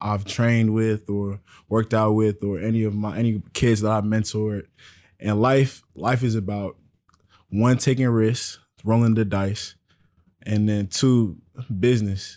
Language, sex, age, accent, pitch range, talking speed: English, male, 20-39, American, 100-115 Hz, 150 wpm